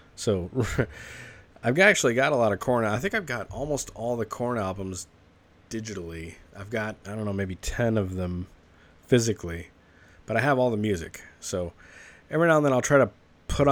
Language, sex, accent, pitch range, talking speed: English, male, American, 90-115 Hz, 190 wpm